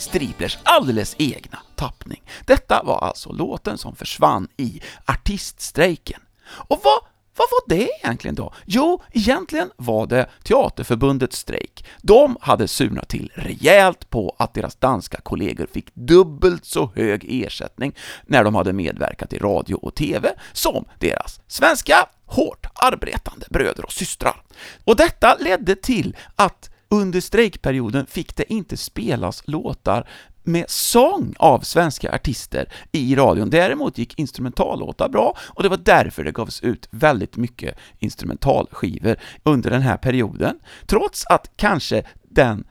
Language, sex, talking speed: English, male, 135 wpm